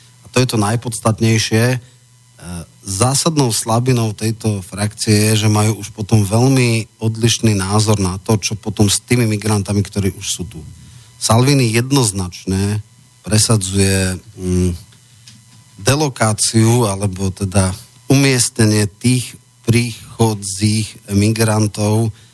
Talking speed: 100 wpm